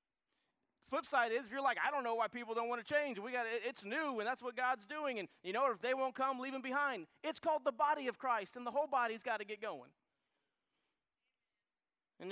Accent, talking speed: American, 245 wpm